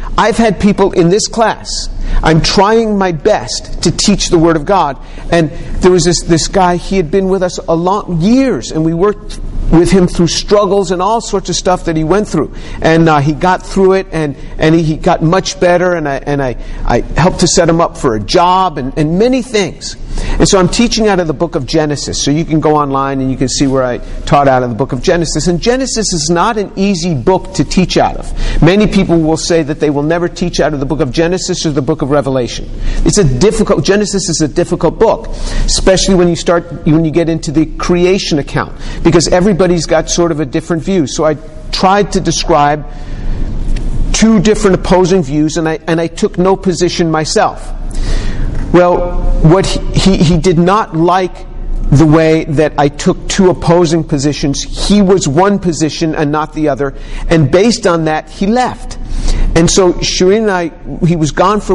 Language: English